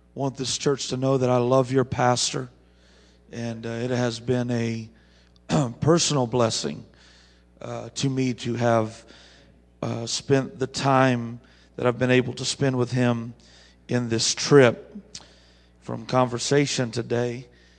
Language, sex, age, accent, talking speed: English, male, 40-59, American, 140 wpm